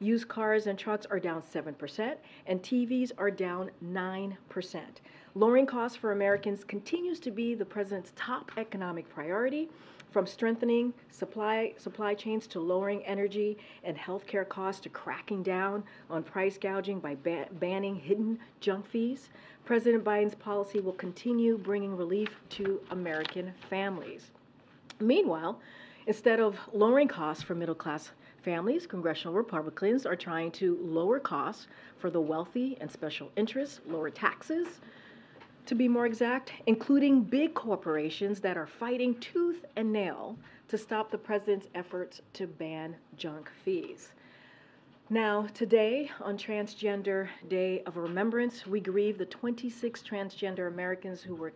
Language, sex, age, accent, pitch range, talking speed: English, female, 40-59, American, 180-230 Hz, 135 wpm